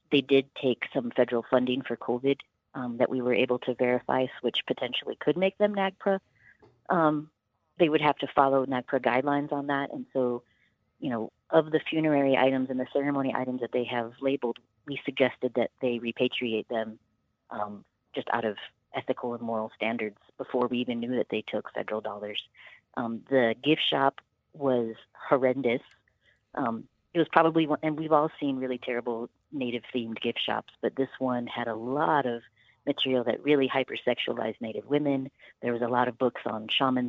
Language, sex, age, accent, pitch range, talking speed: English, female, 40-59, American, 120-145 Hz, 180 wpm